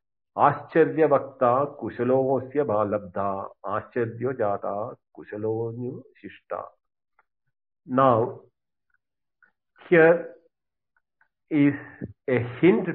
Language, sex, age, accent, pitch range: English, male, 50-69, Indian, 110-150 Hz